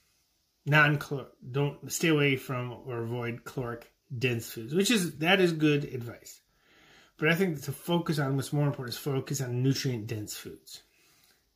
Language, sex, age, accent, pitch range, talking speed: English, male, 30-49, American, 120-145 Hz, 165 wpm